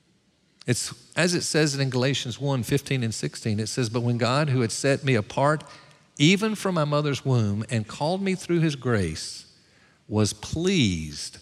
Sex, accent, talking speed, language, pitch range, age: male, American, 175 wpm, English, 115-170 Hz, 50-69